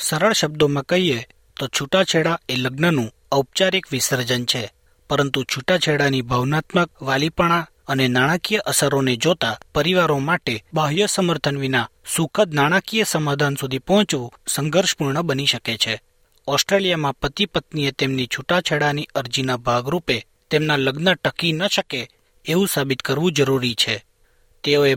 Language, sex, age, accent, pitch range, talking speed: Gujarati, male, 40-59, native, 130-175 Hz, 120 wpm